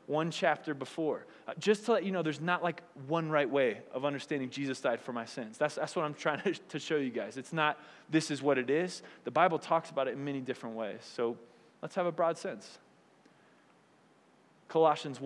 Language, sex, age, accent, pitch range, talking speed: English, male, 20-39, American, 135-170 Hz, 210 wpm